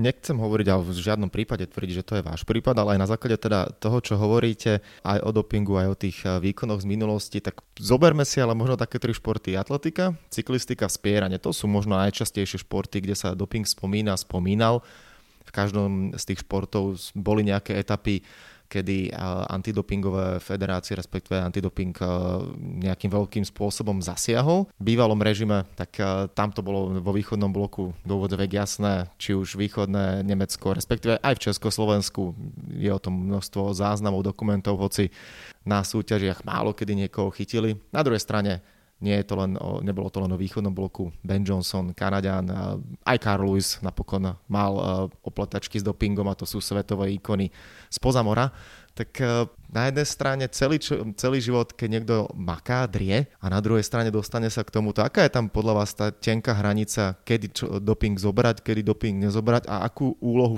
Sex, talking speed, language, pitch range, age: male, 165 wpm, Slovak, 95-110 Hz, 20-39